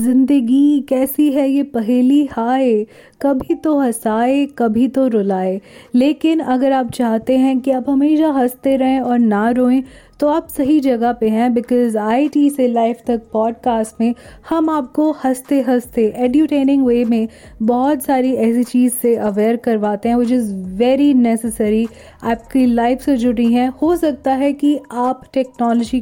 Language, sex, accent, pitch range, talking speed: Hindi, female, native, 235-270 Hz, 160 wpm